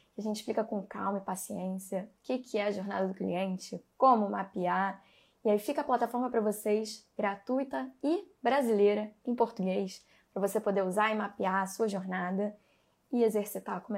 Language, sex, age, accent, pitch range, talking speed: Portuguese, female, 10-29, Brazilian, 205-250 Hz, 170 wpm